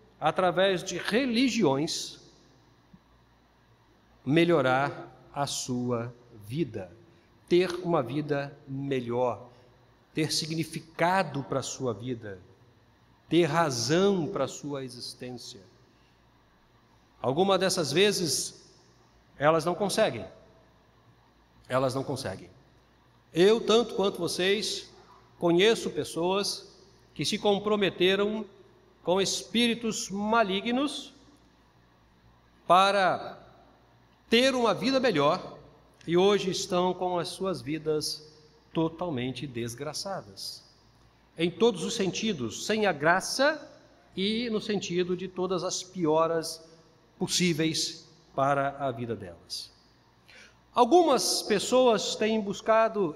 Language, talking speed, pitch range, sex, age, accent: Portuguese, 90 wpm, 135-210 Hz, male, 50-69, Brazilian